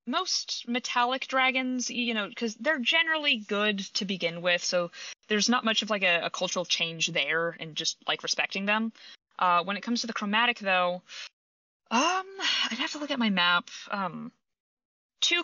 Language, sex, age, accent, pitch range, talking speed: English, female, 20-39, American, 180-250 Hz, 180 wpm